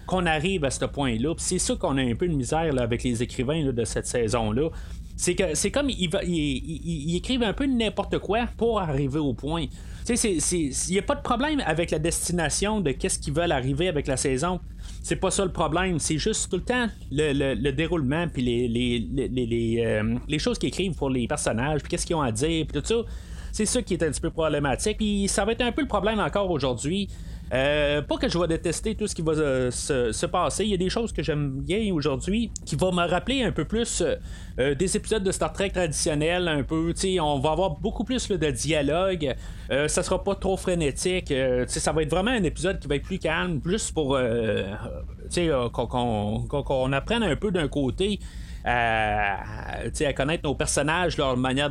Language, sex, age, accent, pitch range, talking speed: French, male, 30-49, Canadian, 125-185 Hz, 230 wpm